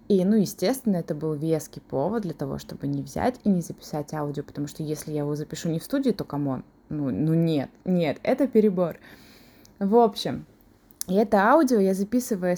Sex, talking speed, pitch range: female, 185 wpm, 175-215 Hz